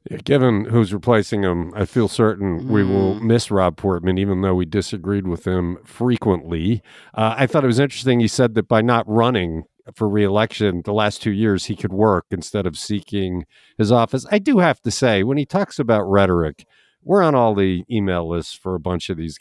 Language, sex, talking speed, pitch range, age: English, male, 205 wpm, 100-145 Hz, 50-69